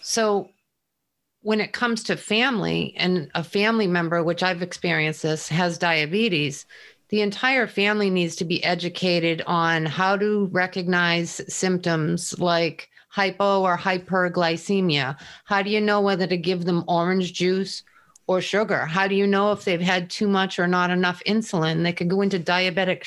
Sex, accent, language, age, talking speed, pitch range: female, American, English, 40-59, 160 wpm, 175-210 Hz